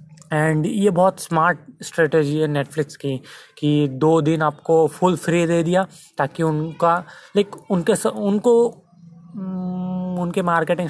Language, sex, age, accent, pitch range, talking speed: Hindi, male, 20-39, native, 155-180 Hz, 125 wpm